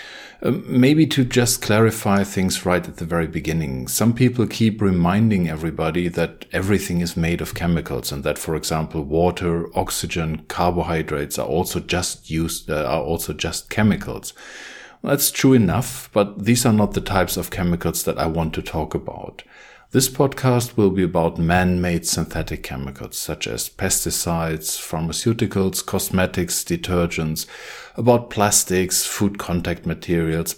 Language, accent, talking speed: English, German, 145 wpm